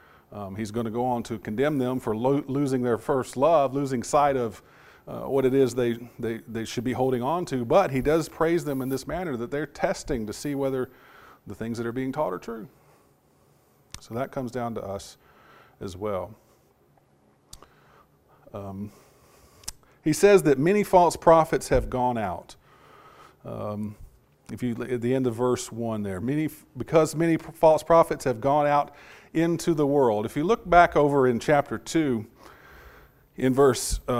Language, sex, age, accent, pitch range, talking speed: English, male, 40-59, American, 115-150 Hz, 175 wpm